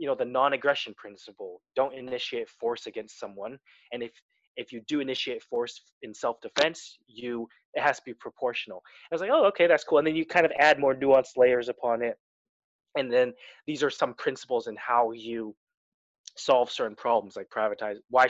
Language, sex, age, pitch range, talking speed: English, male, 20-39, 115-165 Hz, 190 wpm